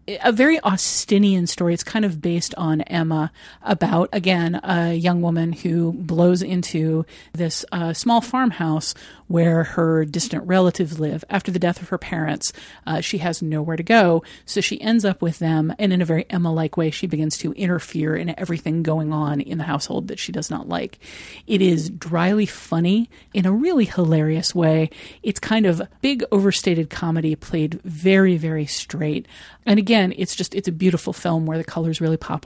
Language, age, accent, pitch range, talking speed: English, 40-59, American, 160-195 Hz, 185 wpm